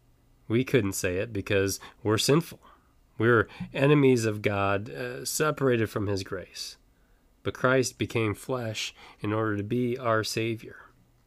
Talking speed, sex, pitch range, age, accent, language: 140 wpm, male, 100-125 Hz, 30-49, American, English